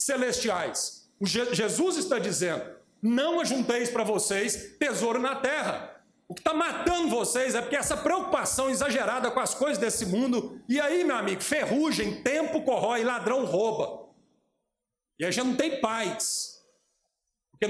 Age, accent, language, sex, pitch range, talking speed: 40-59, Brazilian, Portuguese, male, 205-270 Hz, 150 wpm